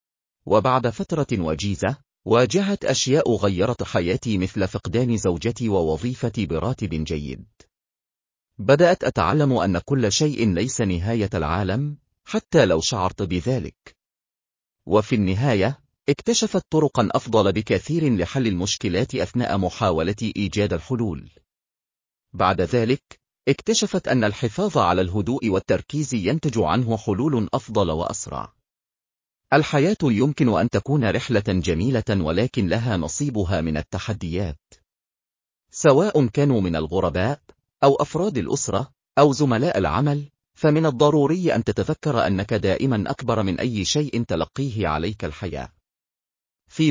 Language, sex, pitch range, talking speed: Arabic, male, 95-140 Hz, 110 wpm